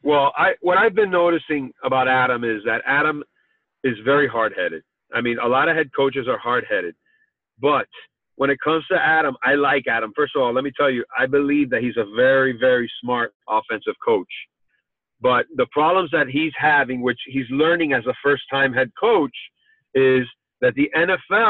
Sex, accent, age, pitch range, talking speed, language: male, American, 40-59, 135-185 Hz, 195 wpm, English